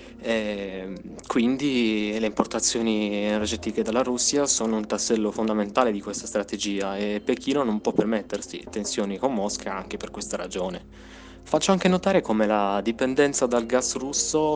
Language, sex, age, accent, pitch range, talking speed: Italian, male, 20-39, native, 100-125 Hz, 145 wpm